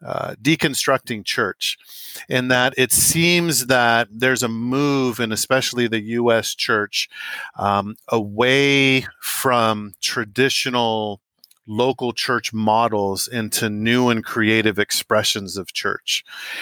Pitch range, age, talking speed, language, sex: 105-125 Hz, 40-59, 110 wpm, English, male